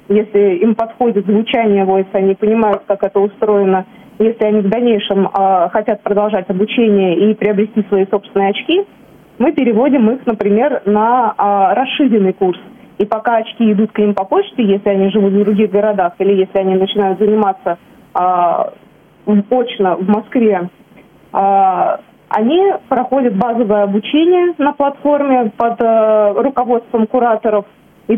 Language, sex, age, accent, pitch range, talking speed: Russian, female, 20-39, native, 200-235 Hz, 130 wpm